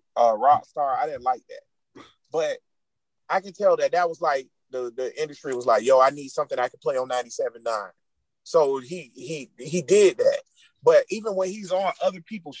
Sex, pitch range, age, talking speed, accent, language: male, 175-265 Hz, 30-49, 200 wpm, American, English